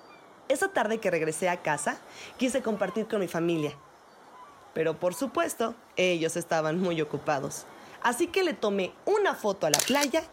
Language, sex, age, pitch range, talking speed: Spanish, female, 30-49, 180-280 Hz, 155 wpm